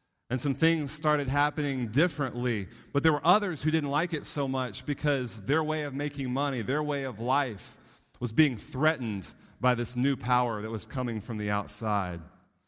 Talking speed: 185 wpm